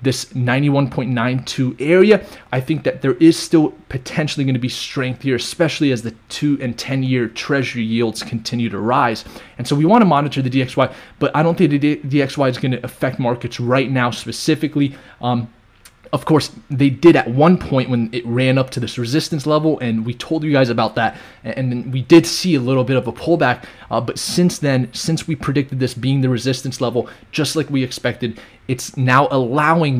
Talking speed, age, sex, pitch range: 200 wpm, 20-39, male, 125-150 Hz